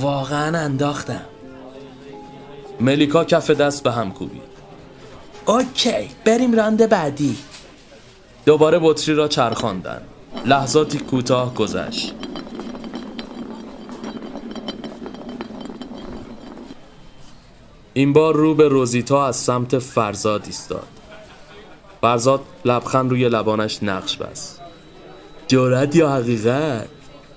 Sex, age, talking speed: male, 30-49, 80 wpm